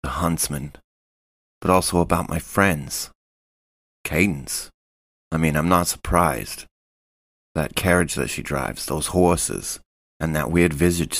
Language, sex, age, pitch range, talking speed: English, male, 30-49, 70-90 Hz, 130 wpm